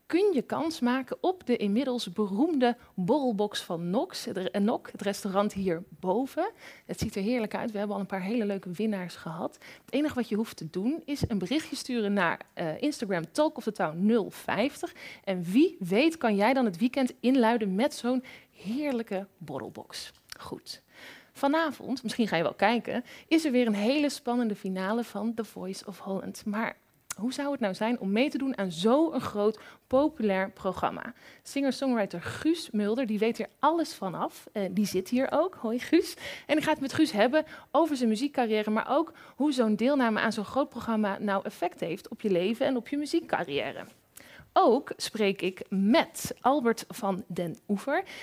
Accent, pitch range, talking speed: Dutch, 200-275 Hz, 180 wpm